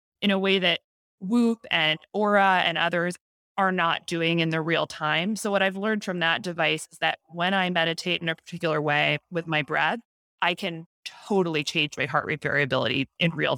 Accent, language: American, English